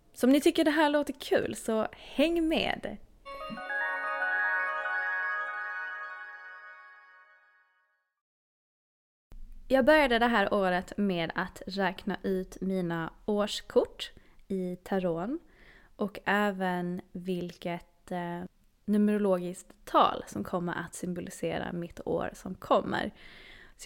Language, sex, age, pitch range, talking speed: Swedish, female, 20-39, 180-210 Hz, 95 wpm